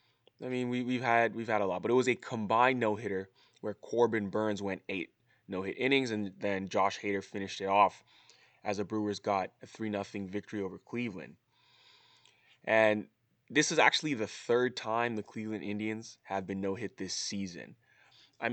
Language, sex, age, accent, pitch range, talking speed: English, male, 20-39, American, 100-120 Hz, 190 wpm